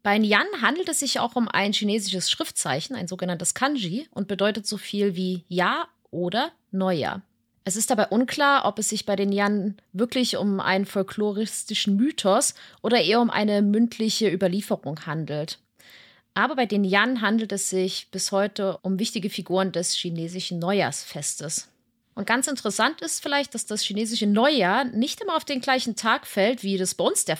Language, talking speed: German, 175 wpm